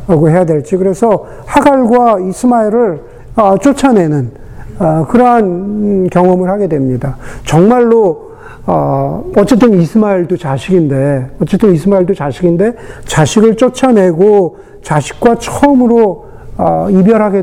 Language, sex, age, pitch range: Korean, male, 50-69, 155-220 Hz